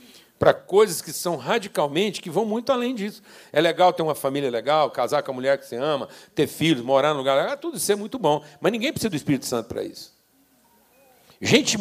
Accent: Brazilian